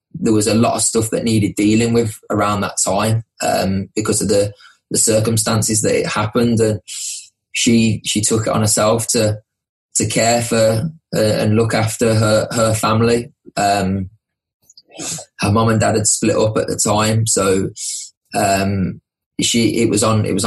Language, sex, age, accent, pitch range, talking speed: English, male, 20-39, British, 105-115 Hz, 175 wpm